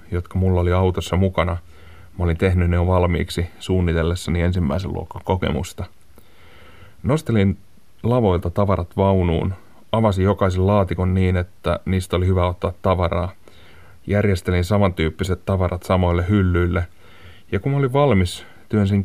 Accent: native